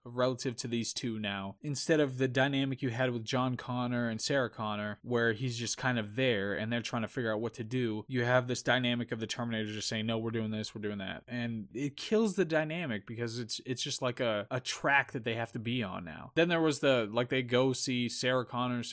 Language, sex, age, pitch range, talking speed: English, male, 20-39, 115-145 Hz, 245 wpm